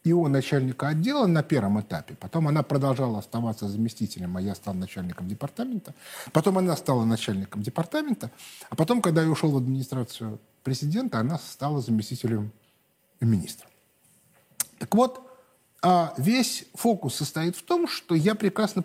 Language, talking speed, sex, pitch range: Russian, 135 wpm, male, 125-185 Hz